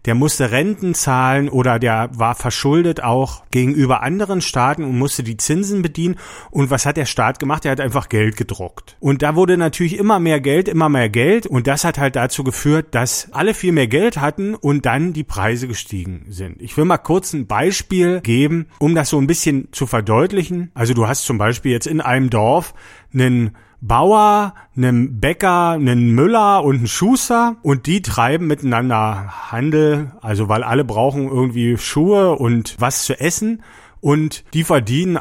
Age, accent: 40-59, German